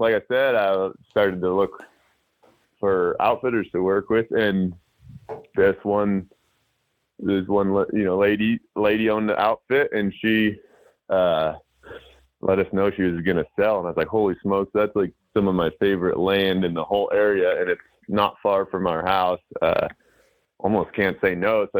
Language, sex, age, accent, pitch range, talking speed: English, male, 20-39, American, 95-115 Hz, 175 wpm